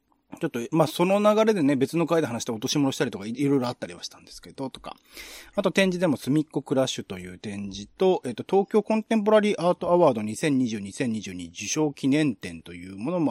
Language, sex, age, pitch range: Japanese, male, 30-49, 115-180 Hz